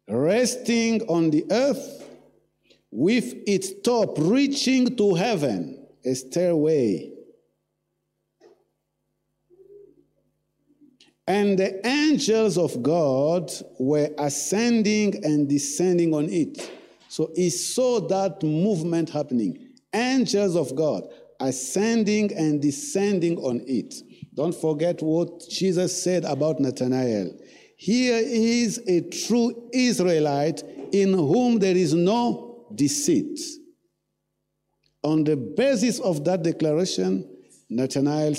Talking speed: 95 wpm